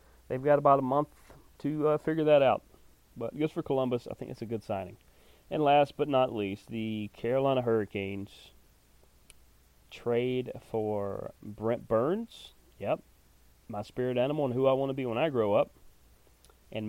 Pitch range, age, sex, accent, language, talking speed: 100-120 Hz, 30-49, male, American, English, 165 wpm